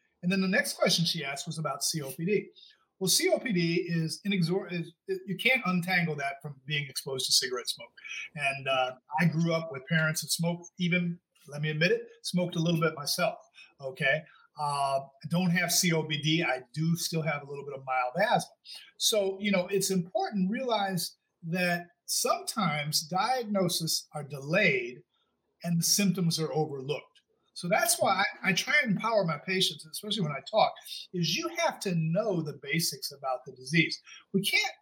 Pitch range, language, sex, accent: 150-195 Hz, English, male, American